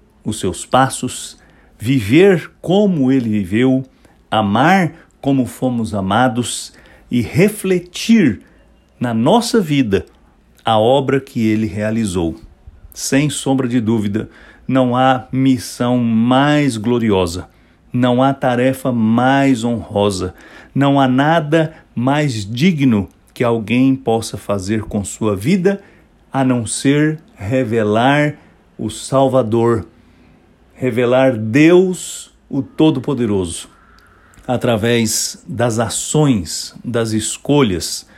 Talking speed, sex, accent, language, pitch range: 95 wpm, male, Brazilian, English, 110-135 Hz